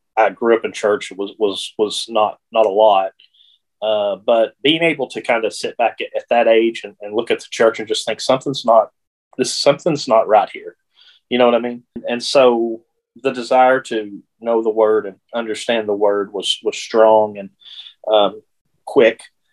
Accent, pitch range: American, 105-130 Hz